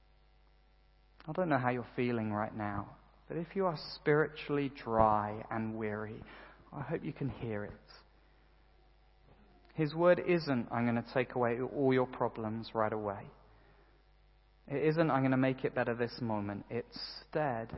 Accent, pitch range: British, 115-150 Hz